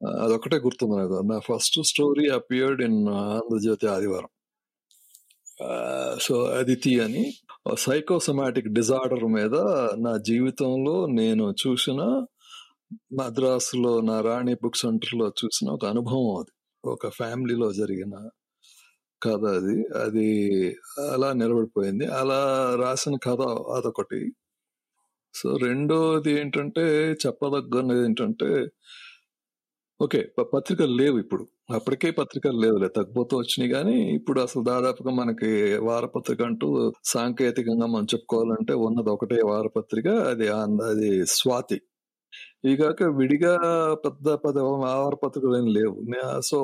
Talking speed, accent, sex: 105 wpm, Indian, male